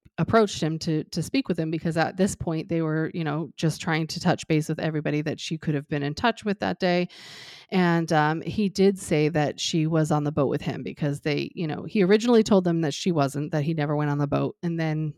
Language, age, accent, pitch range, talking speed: English, 30-49, American, 155-190 Hz, 255 wpm